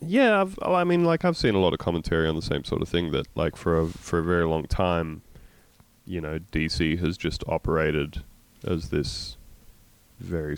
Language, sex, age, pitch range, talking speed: English, male, 20-39, 85-115 Hz, 185 wpm